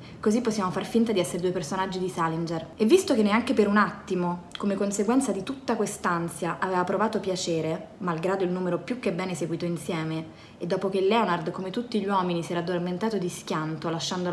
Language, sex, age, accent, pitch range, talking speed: English, female, 20-39, Italian, 175-210 Hz, 195 wpm